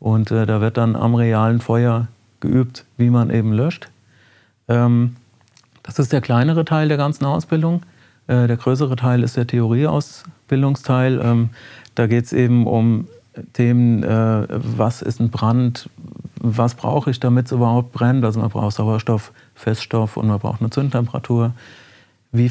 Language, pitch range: German, 110-125 Hz